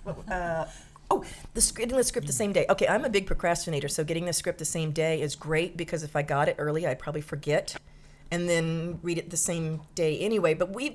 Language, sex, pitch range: English, female, 160-215 Hz